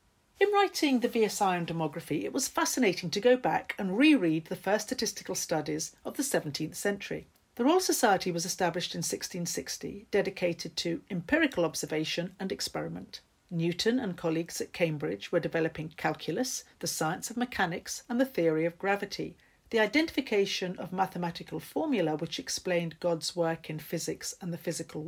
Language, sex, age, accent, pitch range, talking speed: English, female, 50-69, British, 165-235 Hz, 160 wpm